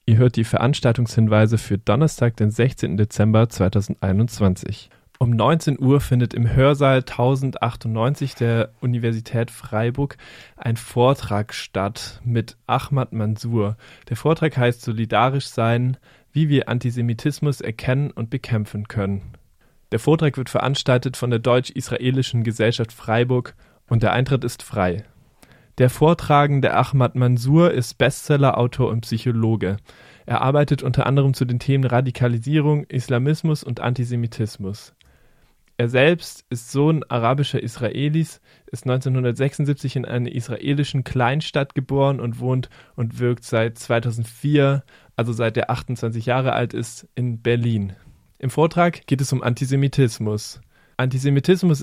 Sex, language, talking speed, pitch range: male, German, 125 wpm, 115-135 Hz